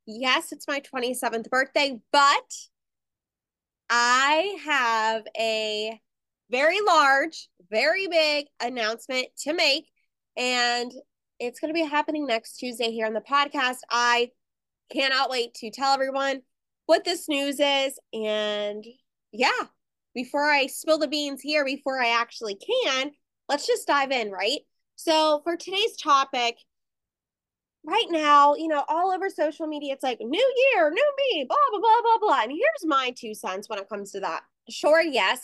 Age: 20-39